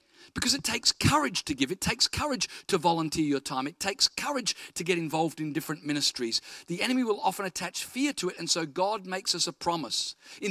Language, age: English, 50-69